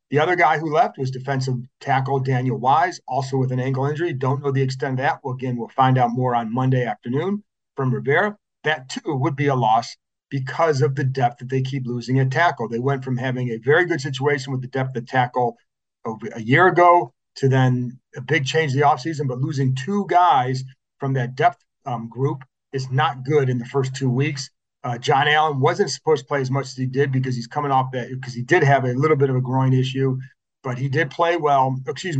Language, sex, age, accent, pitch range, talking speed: English, male, 40-59, American, 130-150 Hz, 230 wpm